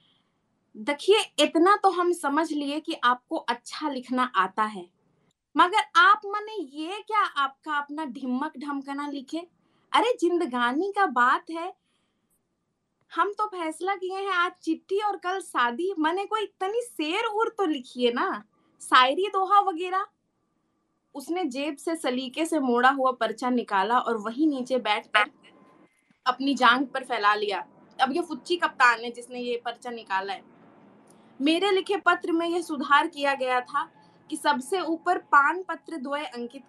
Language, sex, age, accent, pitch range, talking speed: Hindi, female, 20-39, native, 250-335 Hz, 150 wpm